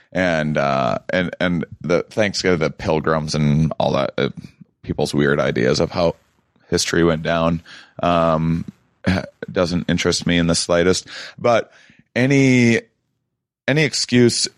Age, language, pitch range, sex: 30-49, English, 85-105 Hz, male